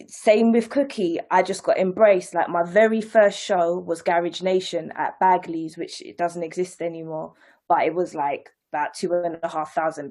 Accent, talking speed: British, 190 wpm